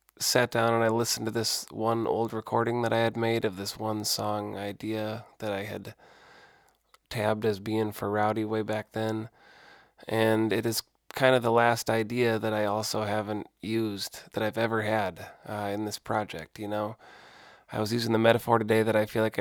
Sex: male